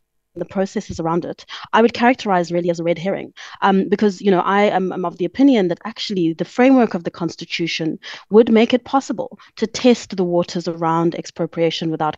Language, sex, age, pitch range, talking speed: English, female, 20-39, 170-210 Hz, 195 wpm